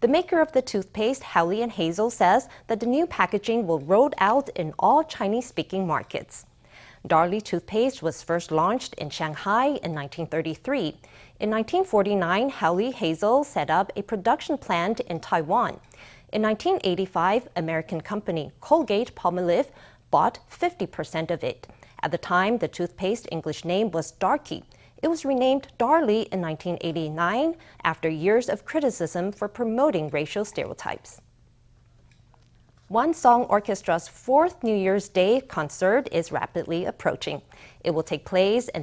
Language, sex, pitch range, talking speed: English, female, 165-240 Hz, 140 wpm